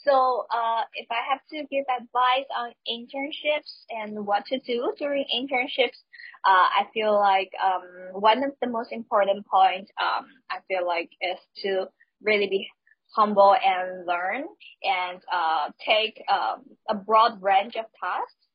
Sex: female